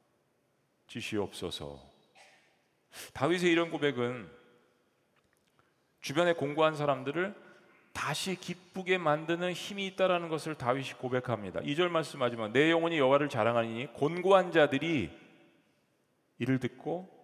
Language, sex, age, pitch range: Korean, male, 40-59, 135-175 Hz